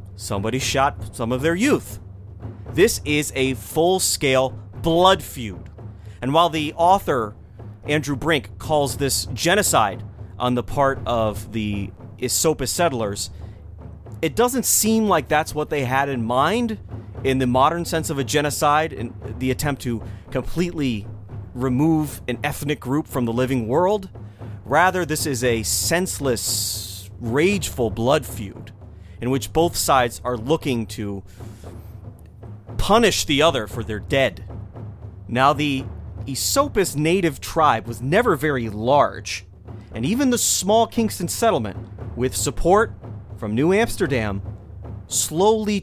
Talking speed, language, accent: 130 wpm, English, American